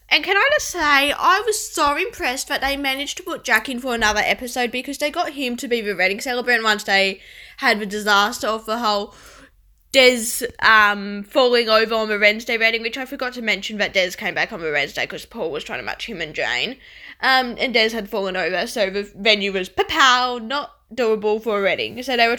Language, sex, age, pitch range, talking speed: English, female, 10-29, 210-270 Hz, 225 wpm